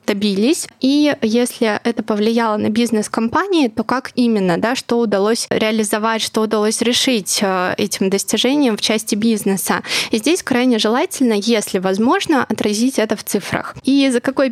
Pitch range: 215-245 Hz